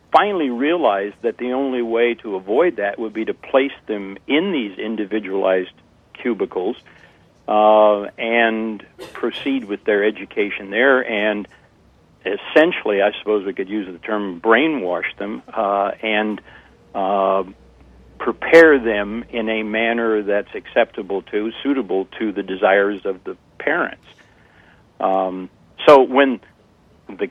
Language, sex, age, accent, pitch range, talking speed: English, male, 60-79, American, 95-115 Hz, 125 wpm